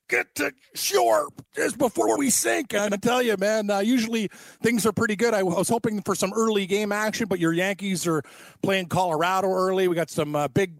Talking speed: 220 wpm